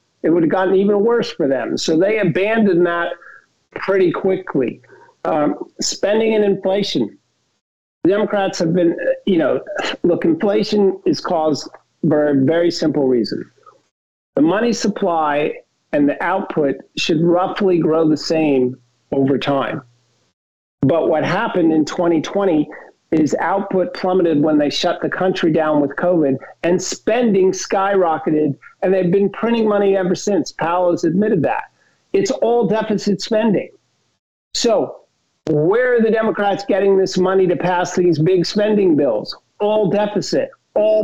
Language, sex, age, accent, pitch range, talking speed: English, male, 50-69, American, 160-205 Hz, 140 wpm